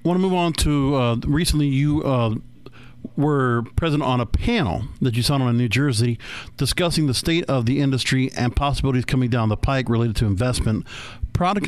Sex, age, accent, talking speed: male, 50-69, American, 190 wpm